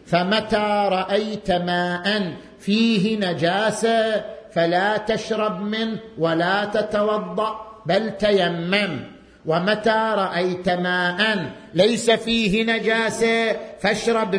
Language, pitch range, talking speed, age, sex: Arabic, 190-250 Hz, 80 wpm, 50-69, male